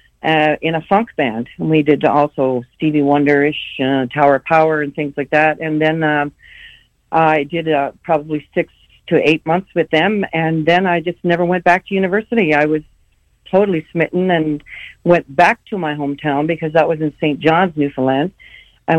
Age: 60-79